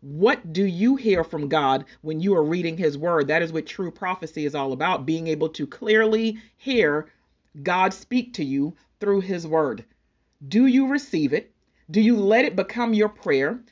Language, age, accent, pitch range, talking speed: English, 40-59, American, 165-225 Hz, 190 wpm